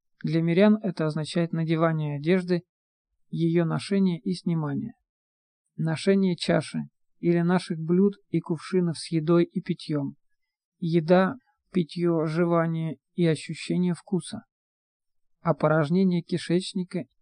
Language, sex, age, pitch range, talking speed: Russian, male, 40-59, 160-185 Hz, 100 wpm